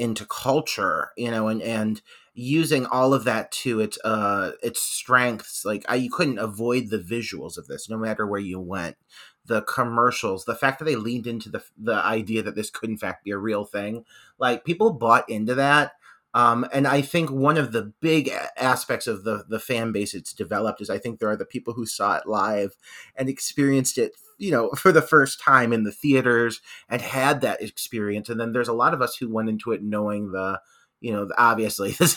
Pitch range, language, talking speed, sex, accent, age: 110-135 Hz, English, 215 wpm, male, American, 30-49